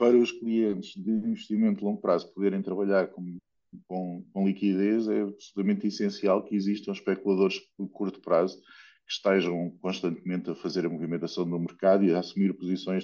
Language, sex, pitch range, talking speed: Portuguese, male, 95-110 Hz, 165 wpm